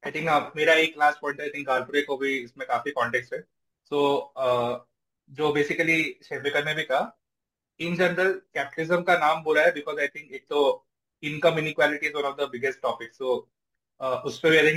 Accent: native